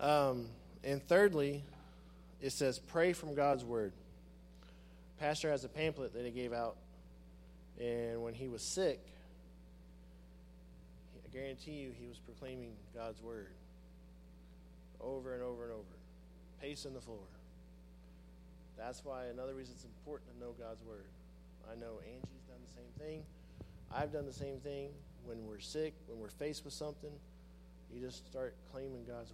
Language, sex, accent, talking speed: English, male, American, 150 wpm